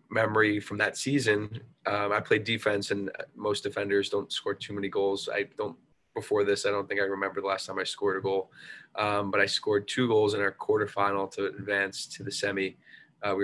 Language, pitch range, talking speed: English, 95-105 Hz, 215 wpm